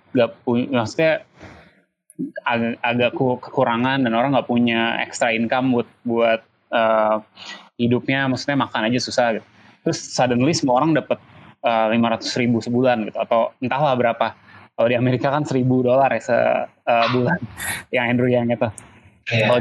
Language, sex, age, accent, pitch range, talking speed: Indonesian, male, 20-39, native, 115-135 Hz, 140 wpm